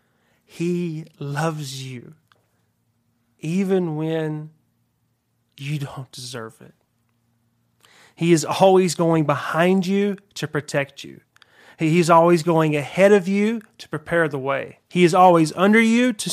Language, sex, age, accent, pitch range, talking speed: English, male, 30-49, American, 130-175 Hz, 130 wpm